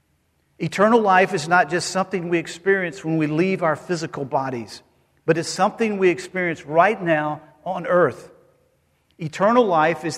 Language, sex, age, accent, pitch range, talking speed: English, male, 50-69, American, 150-200 Hz, 155 wpm